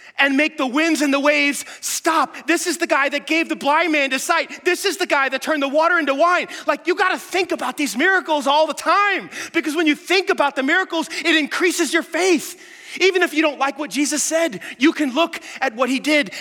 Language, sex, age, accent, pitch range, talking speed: English, male, 30-49, American, 220-330 Hz, 240 wpm